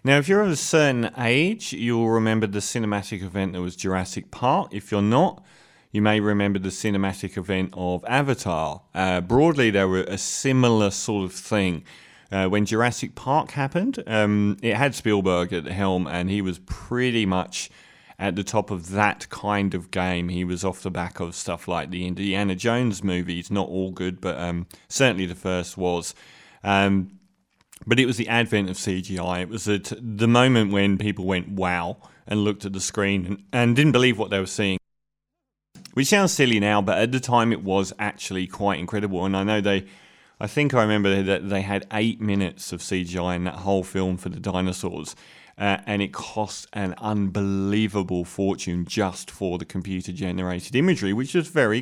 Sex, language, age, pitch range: male, English, 30-49, 95-115 Hz